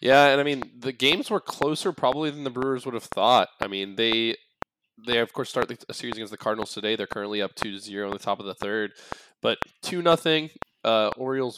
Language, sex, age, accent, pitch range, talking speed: English, male, 20-39, American, 105-125 Hz, 220 wpm